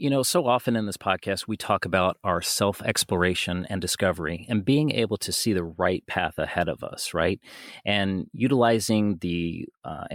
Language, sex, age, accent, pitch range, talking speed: English, male, 30-49, American, 95-120 Hz, 175 wpm